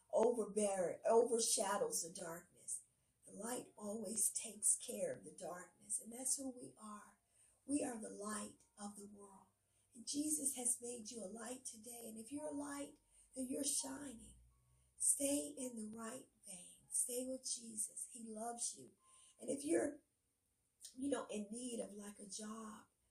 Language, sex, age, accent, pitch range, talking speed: English, female, 50-69, American, 215-270 Hz, 160 wpm